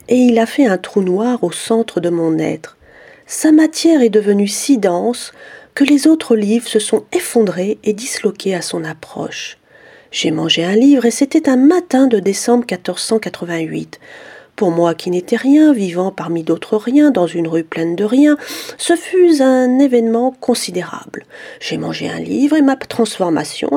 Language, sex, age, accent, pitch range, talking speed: French, female, 40-59, French, 180-270 Hz, 170 wpm